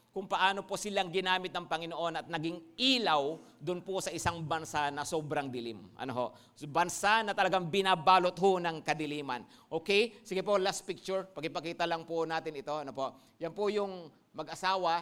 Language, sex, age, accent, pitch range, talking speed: English, male, 50-69, Filipino, 155-200 Hz, 170 wpm